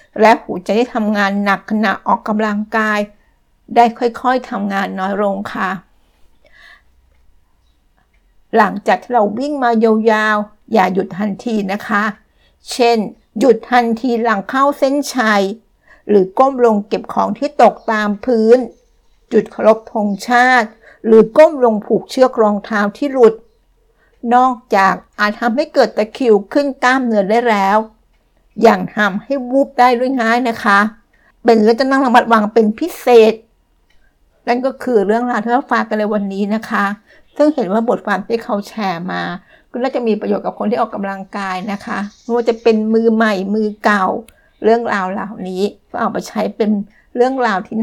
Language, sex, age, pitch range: Thai, female, 60-79, 205-240 Hz